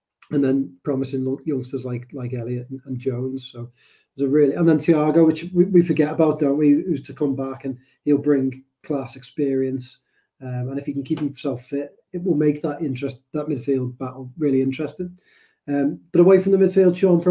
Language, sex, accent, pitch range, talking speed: English, male, British, 135-170 Hz, 205 wpm